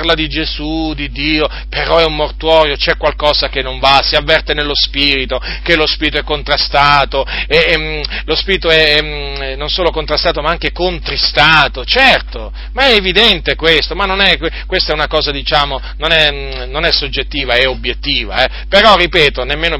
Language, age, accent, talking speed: Italian, 40-59, native, 185 wpm